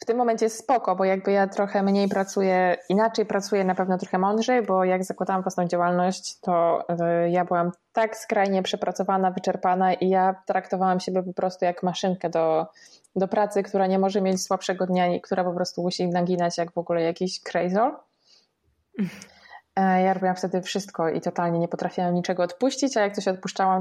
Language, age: Polish, 20-39